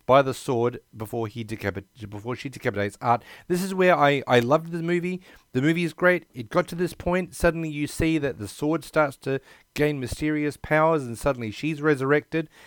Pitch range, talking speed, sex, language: 105-140 Hz, 200 wpm, male, English